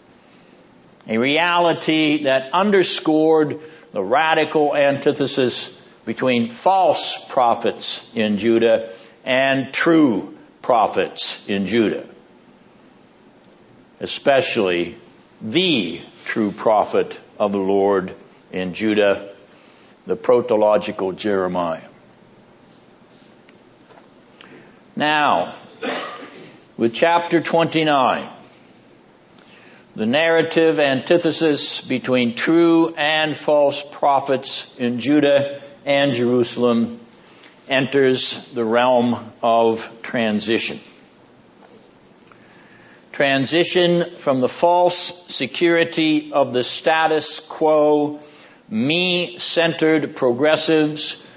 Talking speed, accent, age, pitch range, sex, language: 70 wpm, American, 60-79, 120-160 Hz, male, English